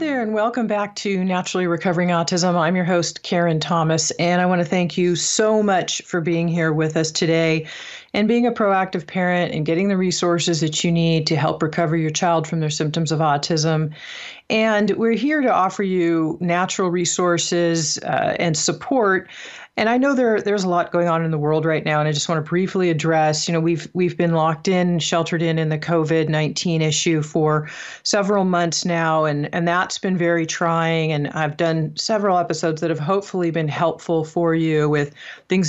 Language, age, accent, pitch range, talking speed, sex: English, 40-59, American, 160-185 Hz, 200 wpm, female